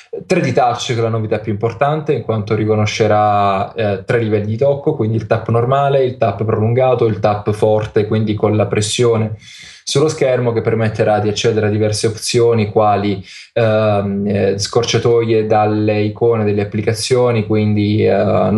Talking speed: 150 wpm